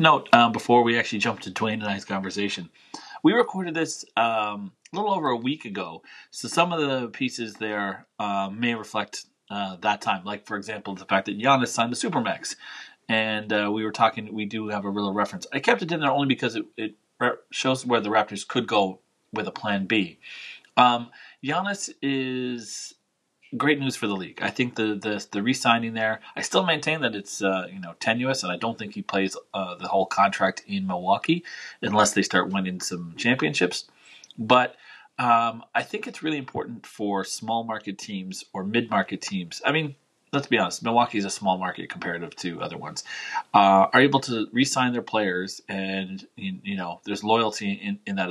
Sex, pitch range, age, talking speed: male, 100-140 Hz, 30-49, 195 wpm